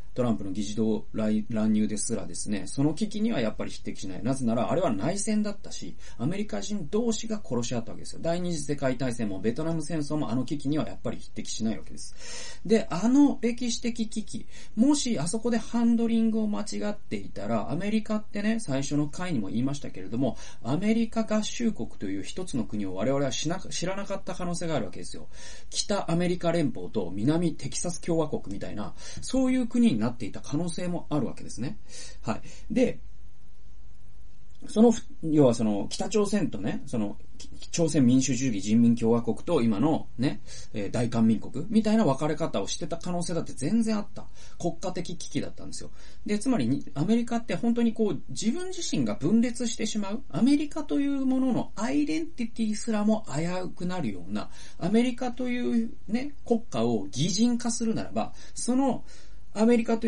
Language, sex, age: Japanese, male, 40-59